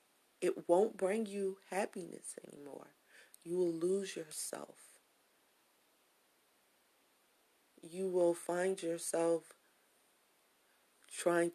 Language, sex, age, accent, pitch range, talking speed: English, female, 30-49, American, 165-195 Hz, 80 wpm